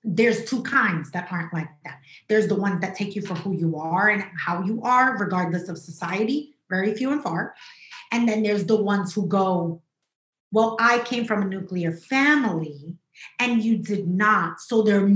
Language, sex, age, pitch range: English, female, 30-49, 180-240 Hz